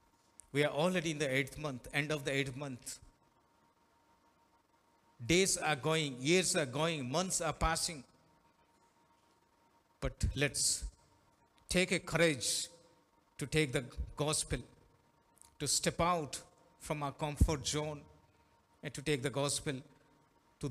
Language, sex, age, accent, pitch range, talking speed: Telugu, male, 60-79, native, 135-155 Hz, 125 wpm